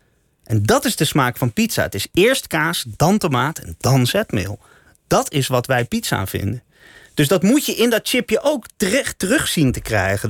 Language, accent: Dutch, Dutch